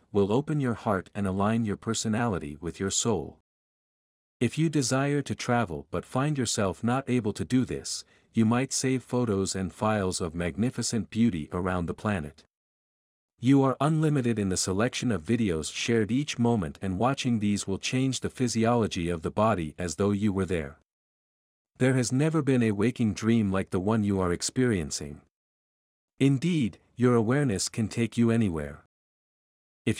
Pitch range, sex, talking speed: 95-125 Hz, male, 165 wpm